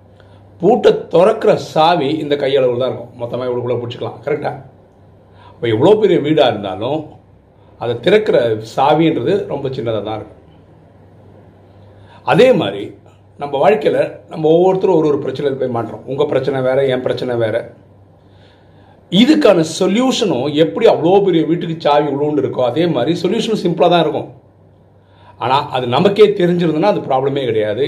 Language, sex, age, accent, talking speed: Tamil, male, 50-69, native, 125 wpm